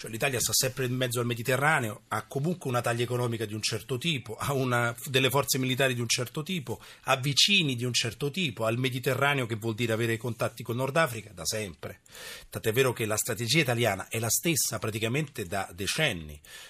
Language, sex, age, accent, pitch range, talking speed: Italian, male, 30-49, native, 115-140 Hz, 200 wpm